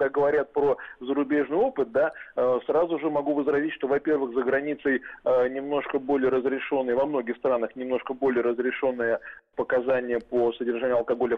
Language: Russian